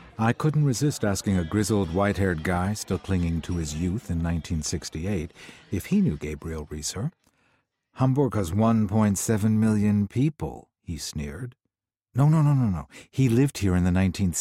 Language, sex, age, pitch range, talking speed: English, male, 60-79, 85-110 Hz, 180 wpm